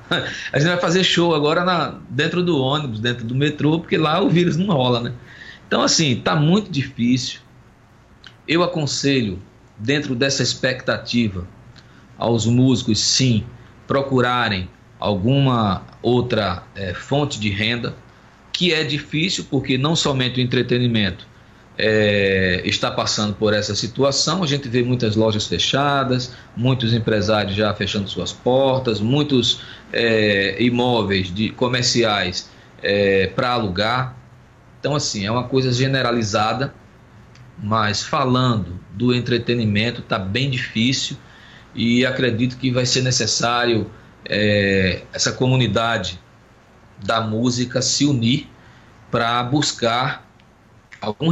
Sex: male